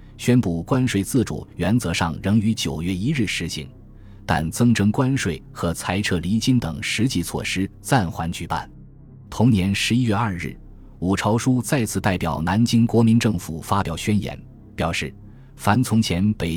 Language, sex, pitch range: Chinese, male, 90-120 Hz